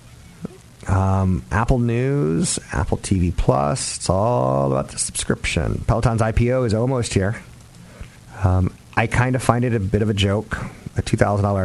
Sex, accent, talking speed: male, American, 150 wpm